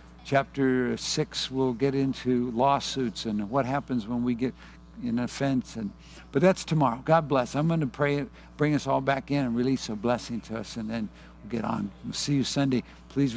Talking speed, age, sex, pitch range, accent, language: 200 wpm, 60-79, male, 120-140 Hz, American, English